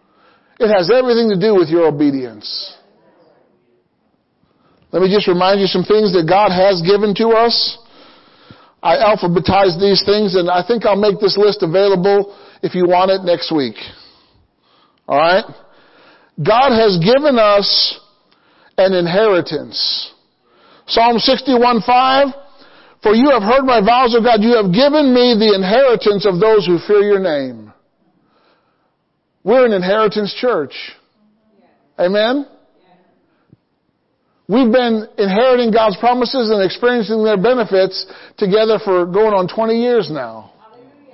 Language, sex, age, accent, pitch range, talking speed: English, male, 50-69, American, 200-240 Hz, 130 wpm